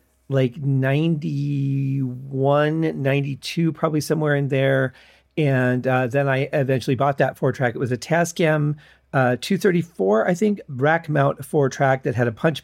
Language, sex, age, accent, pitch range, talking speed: English, male, 40-59, American, 125-150 Hz, 145 wpm